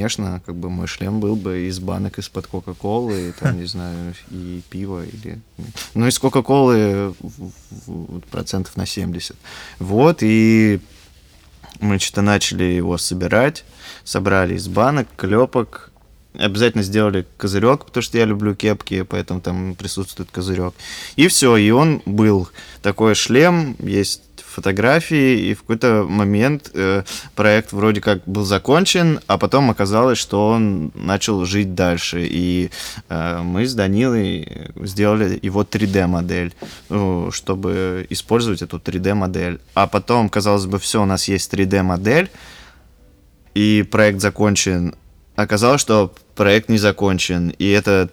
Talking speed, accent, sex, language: 135 wpm, native, male, Russian